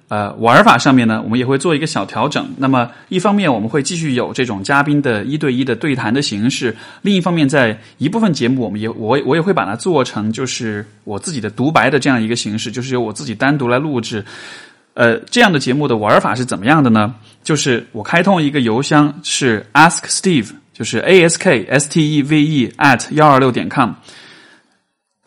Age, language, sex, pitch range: 20-39, Chinese, male, 115-145 Hz